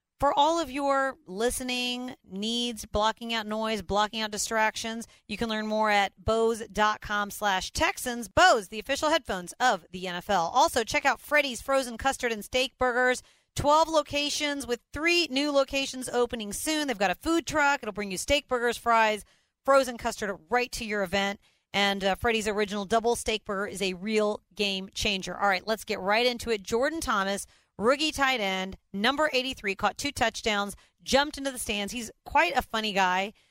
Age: 40-59